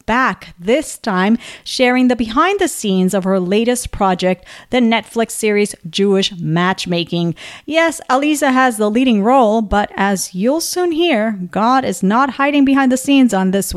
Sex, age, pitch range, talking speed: female, 40-59, 195-265 Hz, 160 wpm